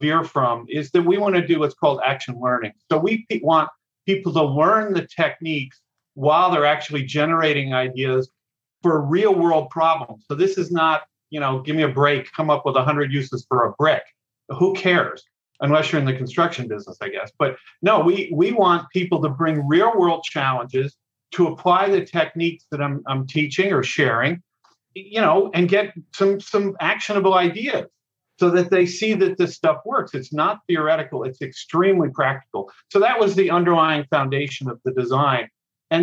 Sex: male